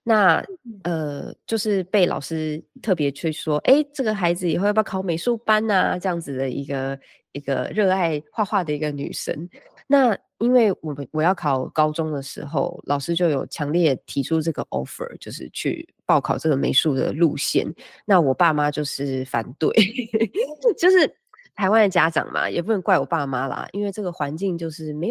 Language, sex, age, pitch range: Chinese, female, 20-39, 150-215 Hz